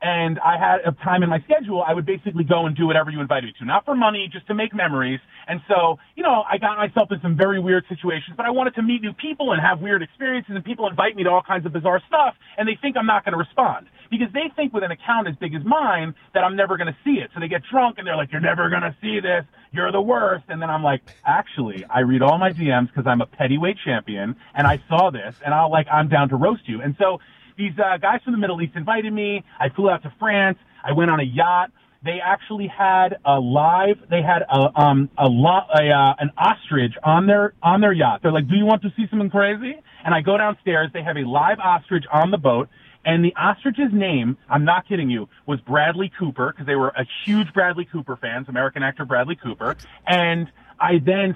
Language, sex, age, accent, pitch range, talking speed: English, male, 40-59, American, 145-205 Hz, 250 wpm